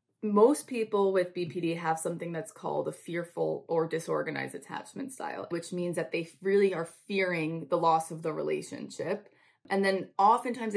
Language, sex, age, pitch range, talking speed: English, female, 20-39, 170-205 Hz, 160 wpm